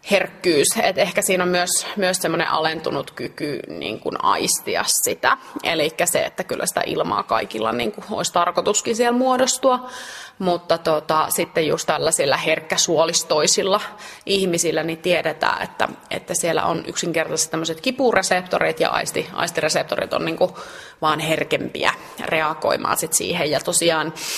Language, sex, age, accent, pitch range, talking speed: Finnish, female, 20-39, native, 165-210 Hz, 125 wpm